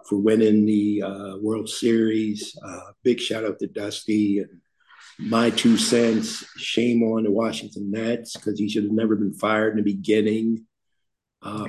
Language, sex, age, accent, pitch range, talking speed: English, male, 50-69, American, 105-115 Hz, 165 wpm